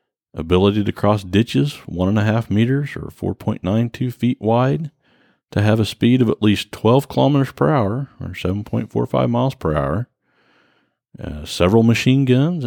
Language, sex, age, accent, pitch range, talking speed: English, male, 40-59, American, 90-125 Hz, 155 wpm